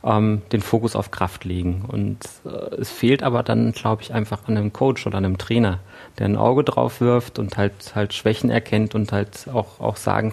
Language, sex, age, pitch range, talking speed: German, male, 40-59, 100-115 Hz, 205 wpm